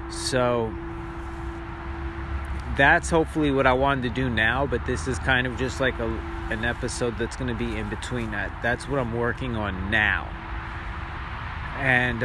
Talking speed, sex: 160 wpm, male